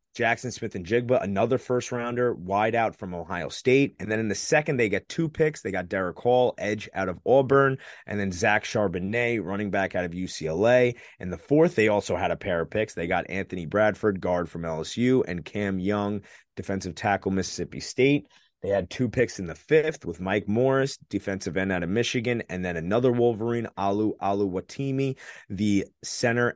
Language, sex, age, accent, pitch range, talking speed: English, male, 30-49, American, 95-120 Hz, 195 wpm